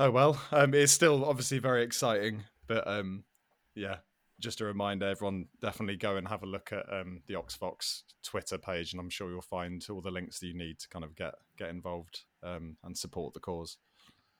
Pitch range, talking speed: 95-140 Hz, 205 wpm